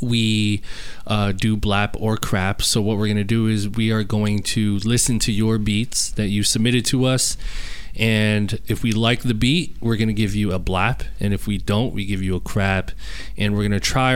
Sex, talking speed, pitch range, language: male, 225 wpm, 105-115 Hz, English